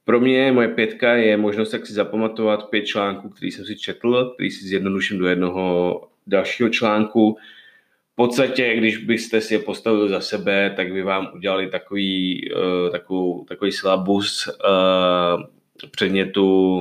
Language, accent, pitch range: Czech, native, 95-110 Hz